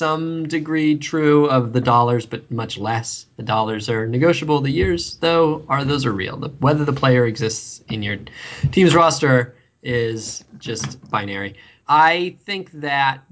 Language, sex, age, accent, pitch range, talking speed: English, male, 20-39, American, 115-145 Hz, 160 wpm